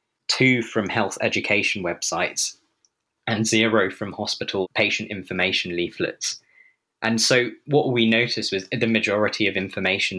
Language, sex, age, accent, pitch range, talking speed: English, male, 20-39, British, 95-115 Hz, 130 wpm